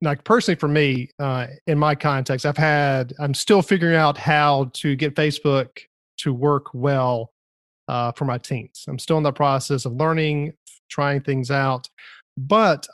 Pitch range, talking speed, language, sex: 130-150 Hz, 165 wpm, English, male